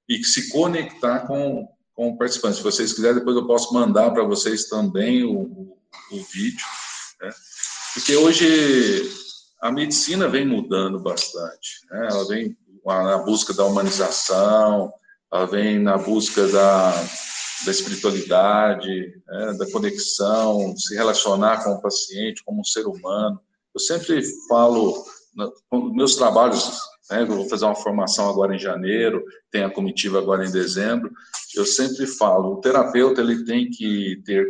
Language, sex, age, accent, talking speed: Portuguese, male, 50-69, Brazilian, 145 wpm